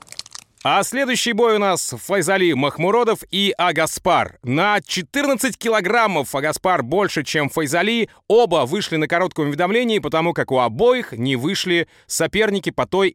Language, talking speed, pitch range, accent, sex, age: Russian, 135 wpm, 145-200 Hz, native, male, 30-49